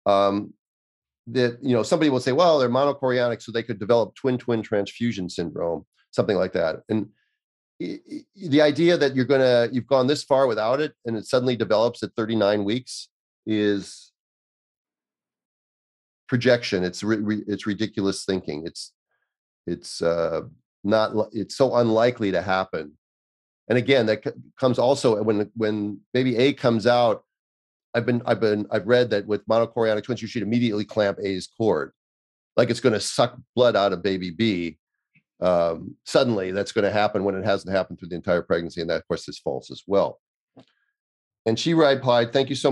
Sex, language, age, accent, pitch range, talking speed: male, English, 40-59, American, 100-125 Hz, 175 wpm